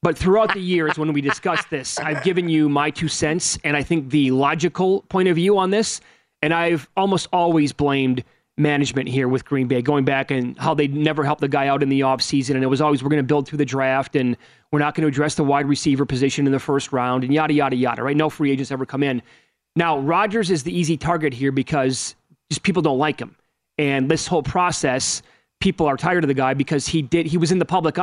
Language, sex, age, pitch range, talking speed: English, male, 30-49, 135-170 Hz, 245 wpm